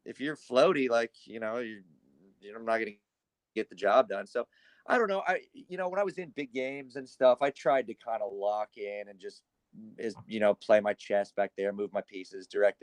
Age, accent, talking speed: 30-49, American, 235 wpm